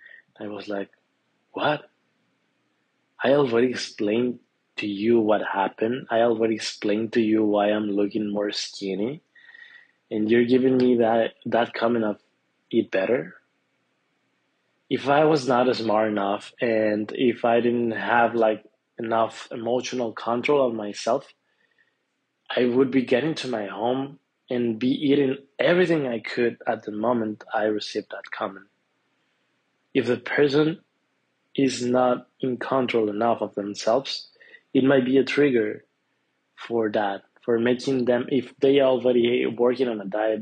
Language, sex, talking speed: English, male, 140 wpm